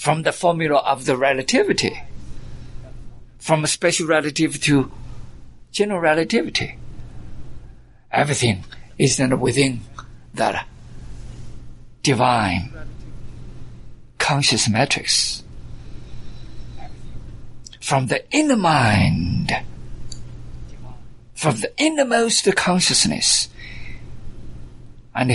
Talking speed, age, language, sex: 70 wpm, 50-69, English, male